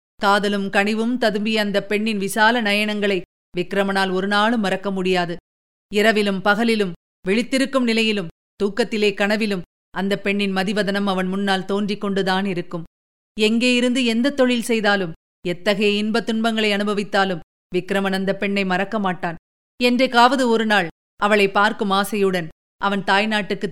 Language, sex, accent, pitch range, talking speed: Tamil, female, native, 195-255 Hz, 115 wpm